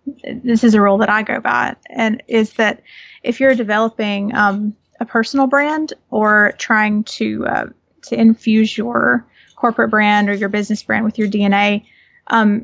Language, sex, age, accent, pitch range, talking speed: English, female, 30-49, American, 210-240 Hz, 165 wpm